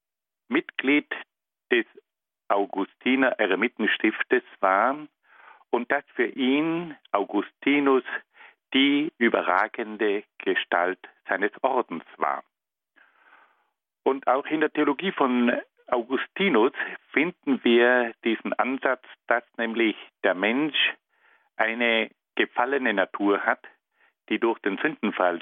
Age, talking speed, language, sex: 50-69, 90 wpm, German, male